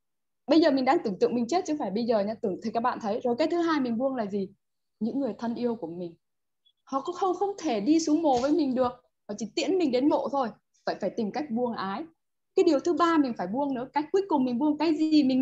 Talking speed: 285 wpm